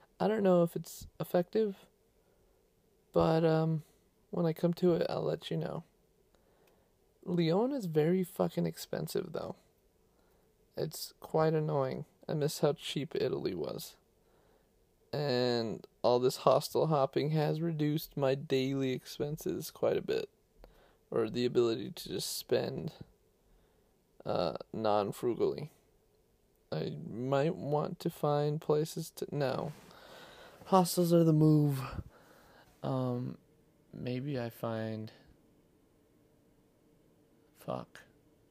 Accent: American